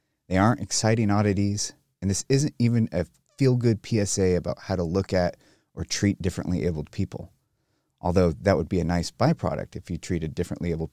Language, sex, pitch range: English, male, 90-125 Hz